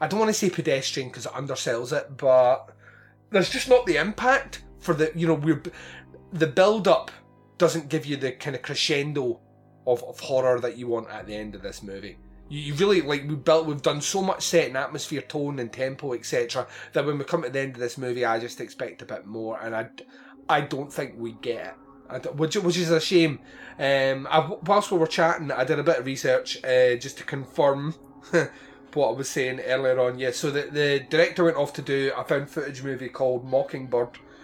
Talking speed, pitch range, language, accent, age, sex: 220 wpm, 130-160 Hz, English, British, 30-49, male